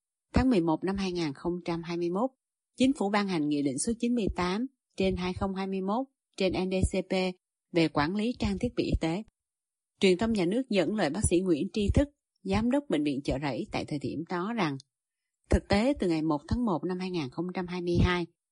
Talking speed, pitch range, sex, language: 180 wpm, 160-215 Hz, female, Vietnamese